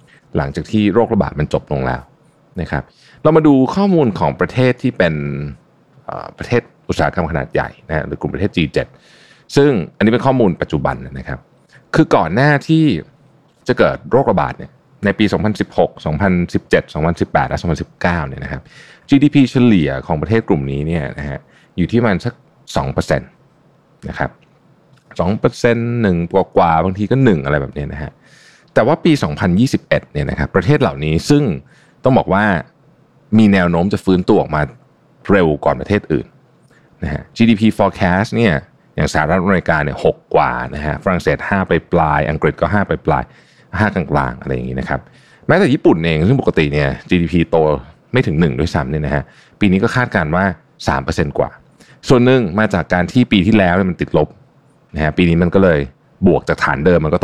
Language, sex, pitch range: Thai, male, 75-120 Hz